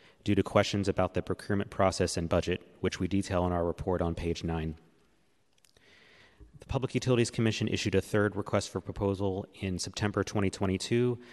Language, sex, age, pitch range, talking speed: English, male, 30-49, 95-105 Hz, 165 wpm